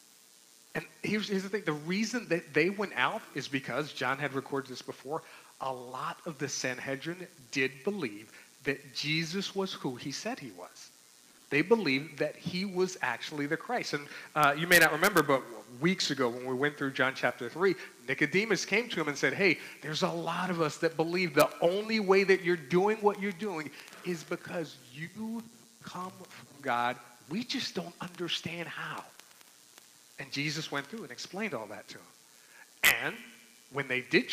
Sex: male